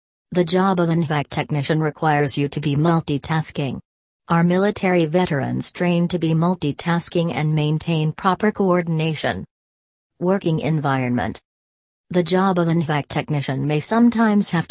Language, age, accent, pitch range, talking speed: English, 40-59, American, 145-180 Hz, 135 wpm